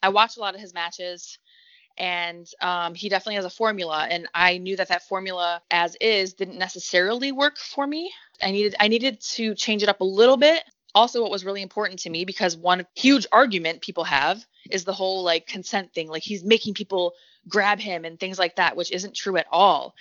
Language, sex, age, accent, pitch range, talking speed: English, female, 20-39, American, 180-220 Hz, 215 wpm